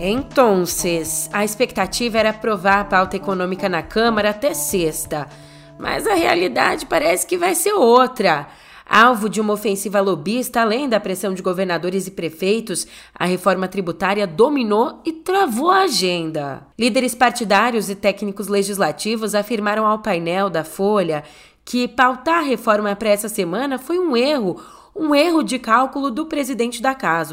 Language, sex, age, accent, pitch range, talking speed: Portuguese, female, 20-39, Brazilian, 175-235 Hz, 150 wpm